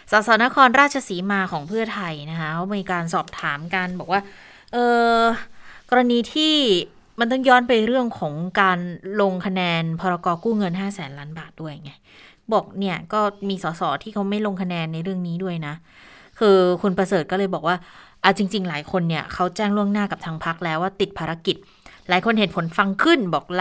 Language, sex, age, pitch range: Thai, female, 20-39, 180-225 Hz